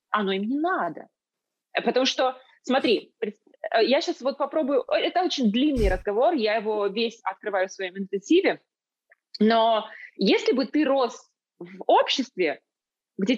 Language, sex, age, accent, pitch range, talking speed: Russian, female, 20-39, native, 210-315 Hz, 135 wpm